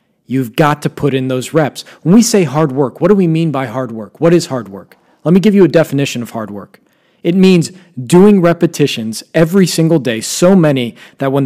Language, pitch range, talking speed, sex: English, 130-160 Hz, 225 wpm, male